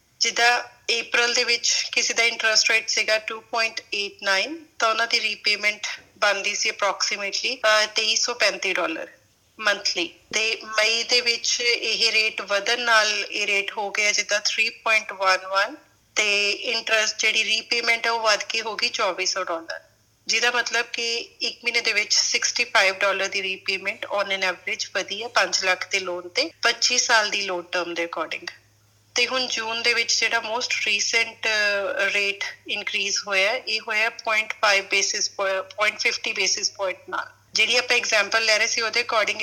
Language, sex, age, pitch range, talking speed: Punjabi, female, 30-49, 195-230 Hz, 130 wpm